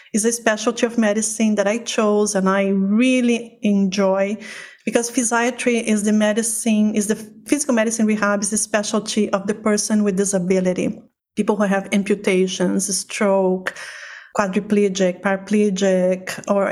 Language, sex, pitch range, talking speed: English, female, 205-250 Hz, 135 wpm